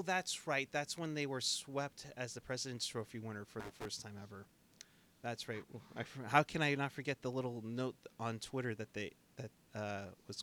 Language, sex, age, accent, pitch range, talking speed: English, male, 30-49, American, 120-155 Hz, 195 wpm